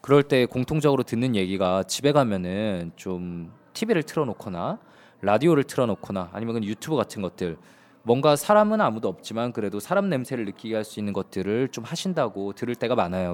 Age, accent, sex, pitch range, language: 20-39, native, male, 100-145 Hz, Korean